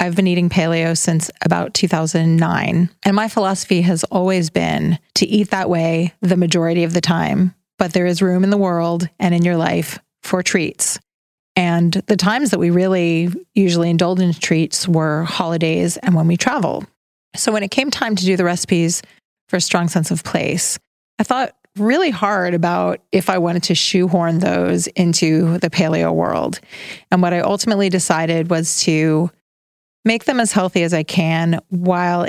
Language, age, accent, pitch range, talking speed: English, 30-49, American, 165-185 Hz, 180 wpm